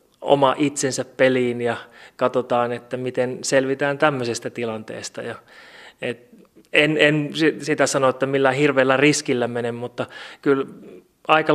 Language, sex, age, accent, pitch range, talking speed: Finnish, male, 30-49, native, 120-145 Hz, 125 wpm